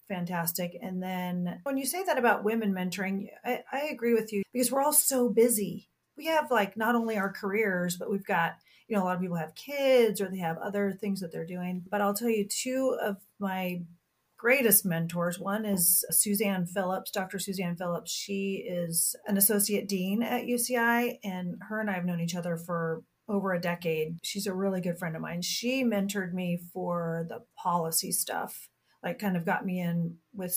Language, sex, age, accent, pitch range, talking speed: English, female, 30-49, American, 175-215 Hz, 195 wpm